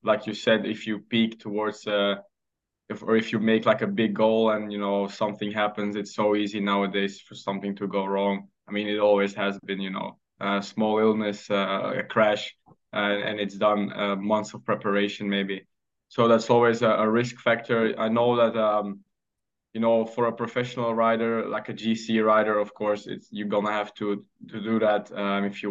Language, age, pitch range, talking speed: English, 20-39, 100-115 Hz, 205 wpm